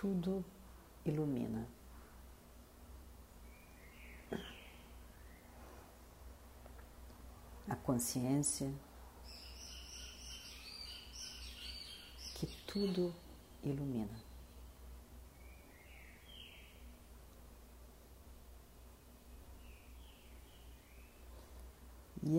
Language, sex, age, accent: Portuguese, female, 50-69, Brazilian